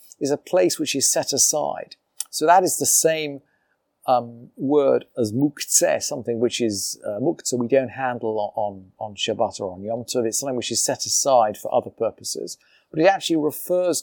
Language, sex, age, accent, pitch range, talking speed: English, male, 40-59, British, 125-160 Hz, 190 wpm